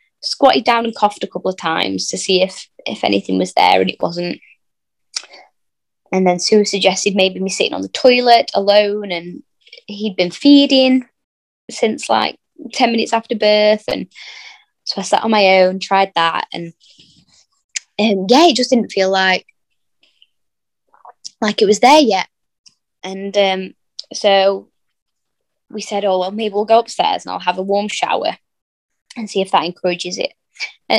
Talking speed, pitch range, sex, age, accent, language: 165 wpm, 190-230 Hz, female, 10-29, British, English